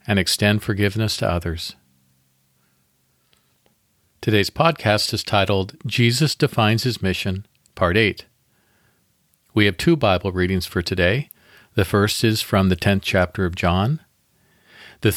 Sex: male